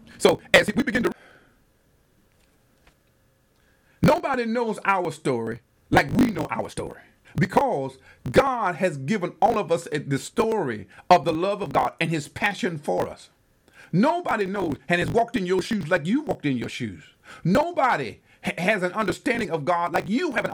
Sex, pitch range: male, 155-225 Hz